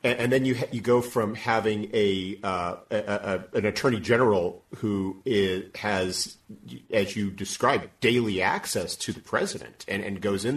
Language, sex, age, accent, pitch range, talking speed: English, male, 40-59, American, 95-115 Hz, 170 wpm